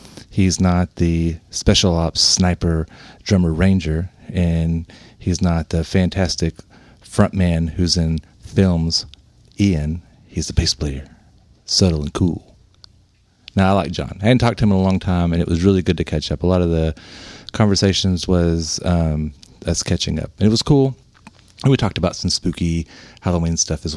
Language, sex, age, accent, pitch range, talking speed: English, male, 40-59, American, 85-105 Hz, 175 wpm